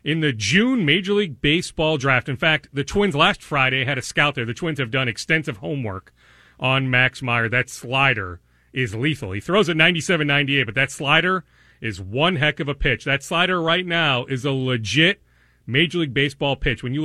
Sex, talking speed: male, 195 wpm